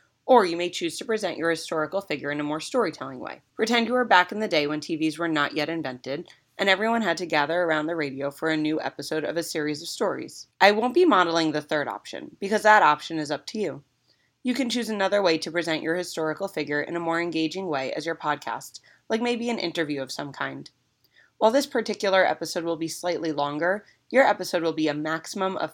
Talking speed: 230 wpm